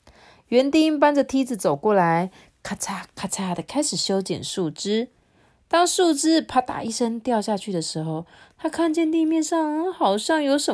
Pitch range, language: 165-260 Hz, Chinese